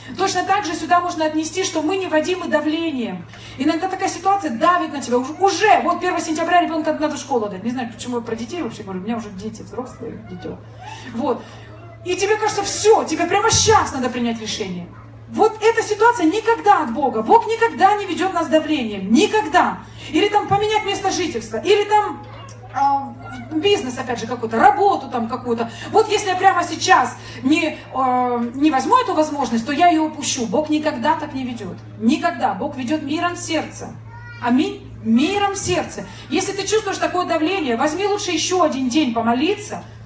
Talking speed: 180 wpm